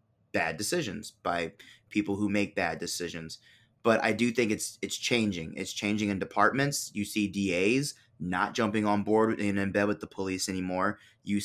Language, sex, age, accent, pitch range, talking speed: English, male, 20-39, American, 105-135 Hz, 180 wpm